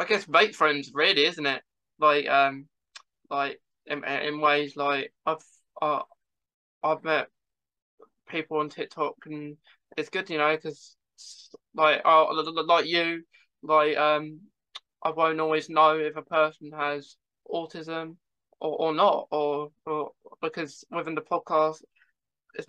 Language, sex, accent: English, male, British